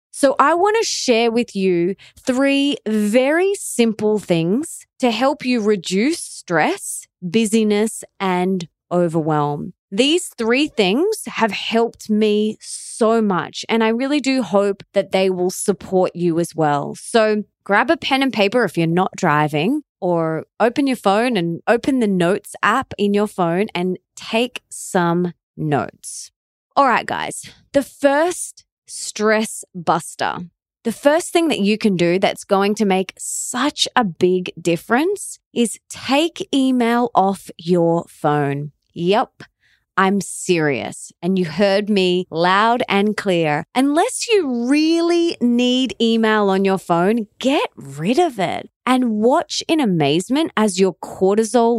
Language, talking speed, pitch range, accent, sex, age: English, 140 wpm, 180-250 Hz, Australian, female, 20-39